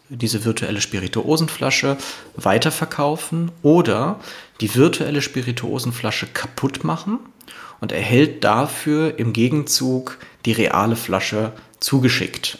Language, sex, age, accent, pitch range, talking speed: German, male, 30-49, German, 115-140 Hz, 90 wpm